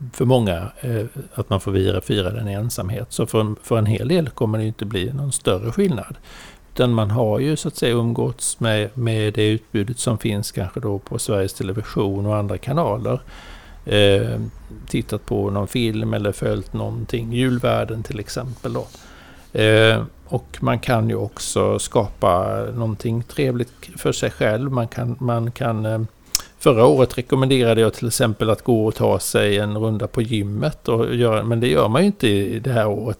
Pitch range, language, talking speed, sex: 105-125 Hz, Swedish, 180 wpm, male